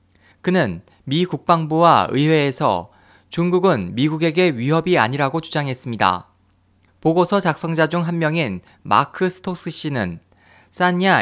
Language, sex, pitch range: Korean, male, 125-170 Hz